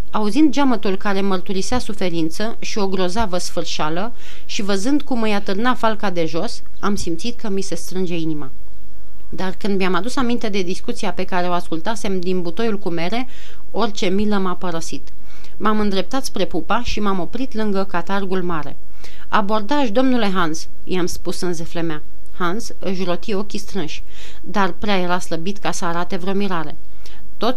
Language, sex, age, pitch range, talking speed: Romanian, female, 30-49, 175-220 Hz, 165 wpm